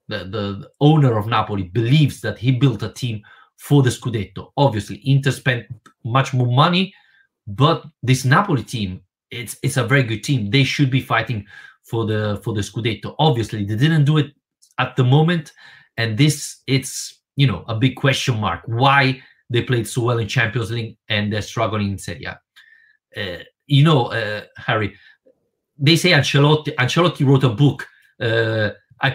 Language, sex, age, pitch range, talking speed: English, male, 30-49, 115-140 Hz, 175 wpm